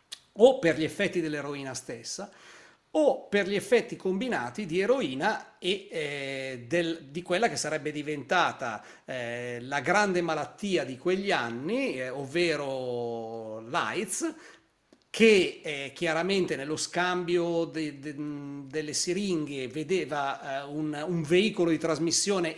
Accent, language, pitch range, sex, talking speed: native, Italian, 150-205 Hz, male, 125 wpm